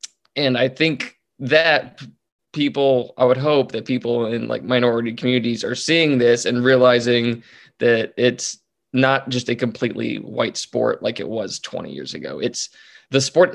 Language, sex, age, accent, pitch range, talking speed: English, male, 20-39, American, 115-130 Hz, 160 wpm